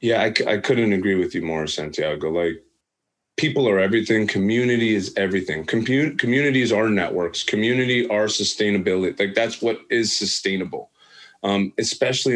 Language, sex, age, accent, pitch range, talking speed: English, male, 30-49, American, 105-140 Hz, 140 wpm